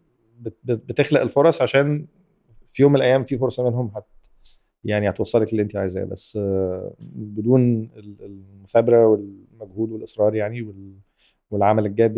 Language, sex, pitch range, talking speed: Arabic, male, 105-130 Hz, 120 wpm